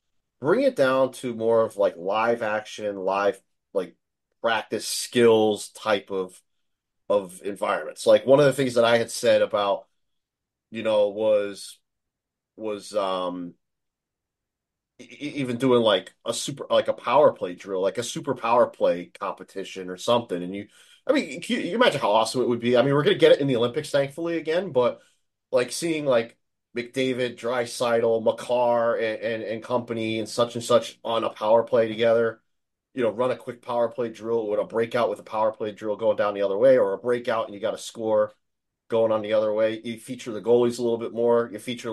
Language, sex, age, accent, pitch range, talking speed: English, male, 30-49, American, 110-130 Hz, 200 wpm